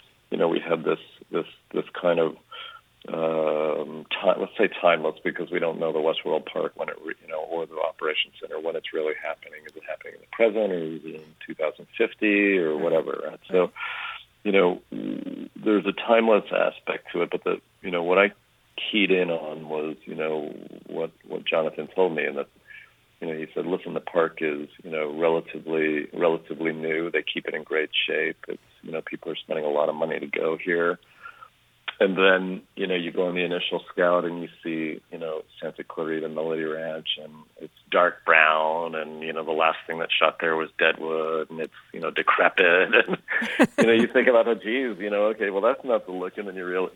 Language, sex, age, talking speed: English, male, 40-59, 215 wpm